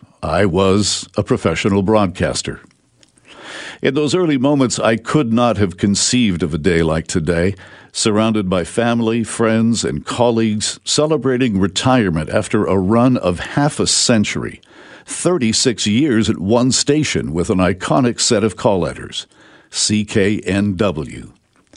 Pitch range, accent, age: 95-120 Hz, American, 60-79